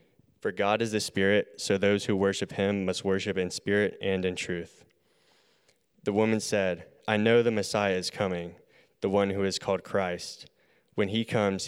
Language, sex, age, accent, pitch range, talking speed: English, male, 20-39, American, 95-110 Hz, 180 wpm